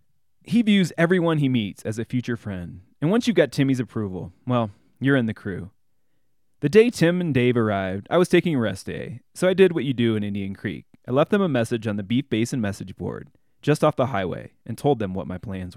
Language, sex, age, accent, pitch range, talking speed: English, male, 20-39, American, 100-140 Hz, 235 wpm